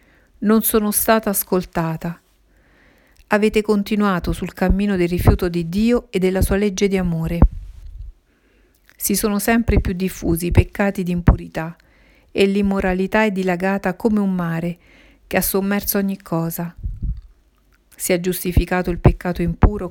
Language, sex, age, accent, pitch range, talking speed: Italian, female, 50-69, native, 170-195 Hz, 135 wpm